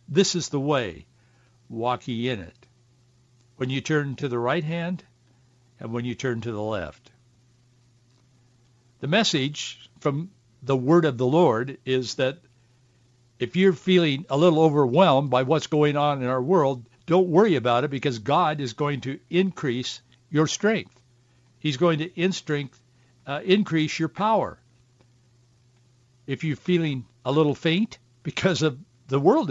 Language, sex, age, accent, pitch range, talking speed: English, male, 60-79, American, 120-180 Hz, 155 wpm